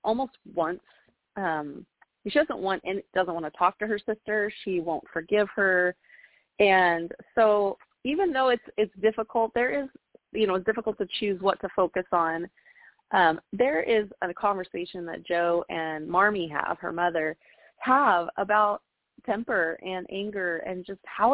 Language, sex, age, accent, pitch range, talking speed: English, female, 30-49, American, 170-215 Hz, 160 wpm